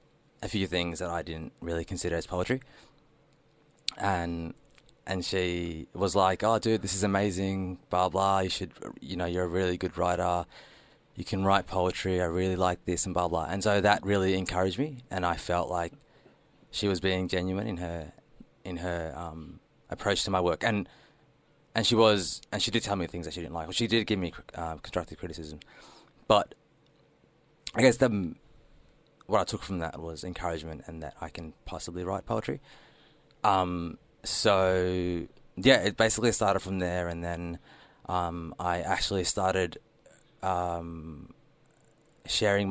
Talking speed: 170 wpm